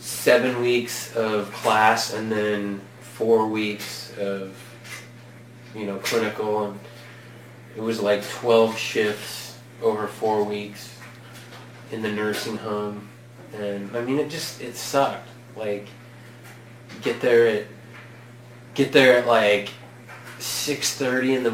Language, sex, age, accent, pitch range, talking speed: English, male, 20-39, American, 110-120 Hz, 115 wpm